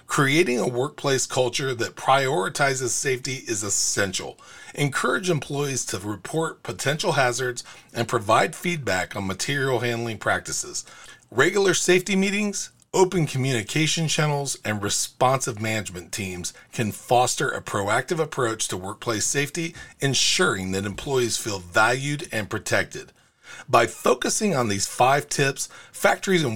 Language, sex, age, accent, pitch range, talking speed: English, male, 40-59, American, 115-160 Hz, 125 wpm